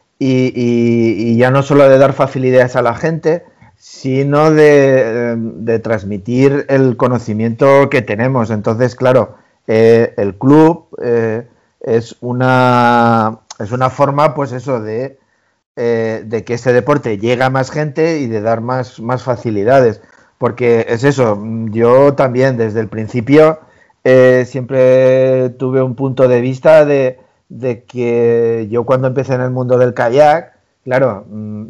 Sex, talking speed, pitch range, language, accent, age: male, 140 wpm, 120-135 Hz, Spanish, Spanish, 50-69